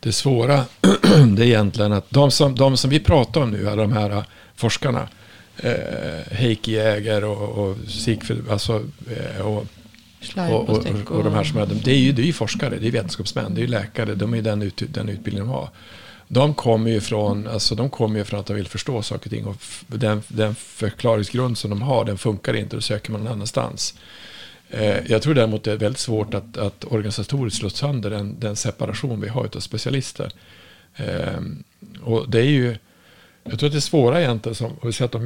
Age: 50-69